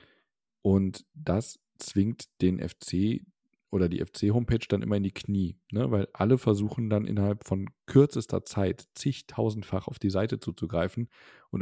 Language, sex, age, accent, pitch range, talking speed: German, male, 40-59, German, 95-110 Hz, 140 wpm